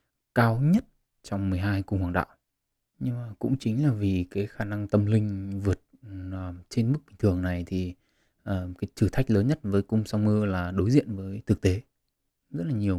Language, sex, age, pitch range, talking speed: Vietnamese, male, 20-39, 95-110 Hz, 205 wpm